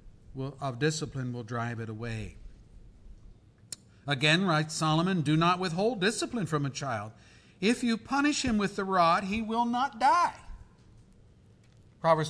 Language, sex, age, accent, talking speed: English, male, 50-69, American, 135 wpm